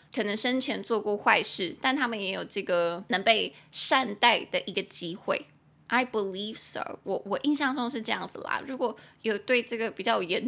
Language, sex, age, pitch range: Chinese, female, 20-39, 200-260 Hz